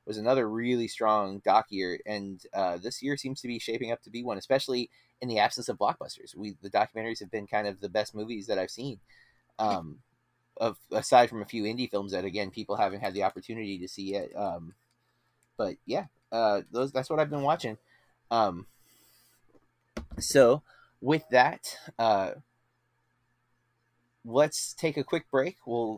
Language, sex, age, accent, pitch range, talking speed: English, male, 30-49, American, 110-145 Hz, 175 wpm